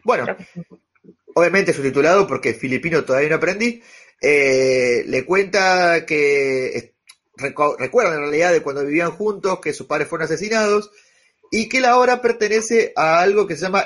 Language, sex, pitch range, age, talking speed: Spanish, male, 140-235 Hz, 30-49, 155 wpm